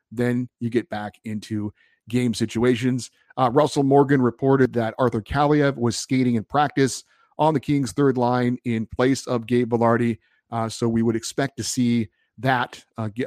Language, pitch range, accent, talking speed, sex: English, 115-135 Hz, American, 165 wpm, male